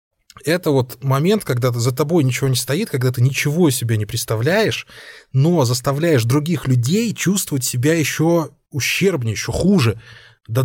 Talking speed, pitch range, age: 145 wpm, 120-160 Hz, 20-39